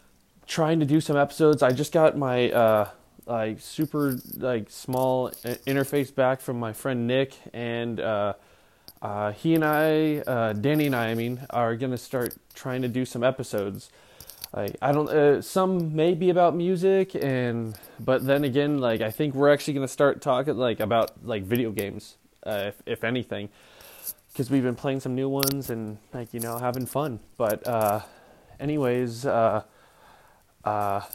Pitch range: 120-150 Hz